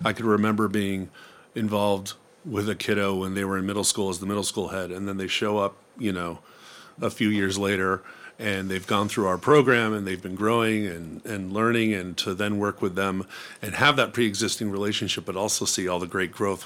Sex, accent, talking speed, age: male, American, 220 wpm, 40-59